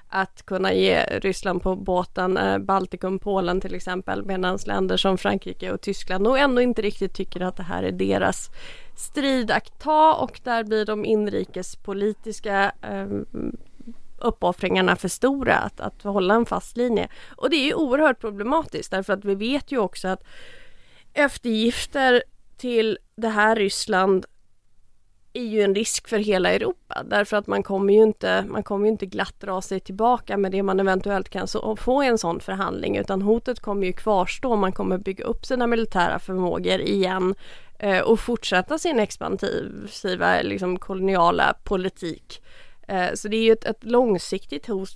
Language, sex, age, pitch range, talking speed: English, female, 30-49, 185-230 Hz, 155 wpm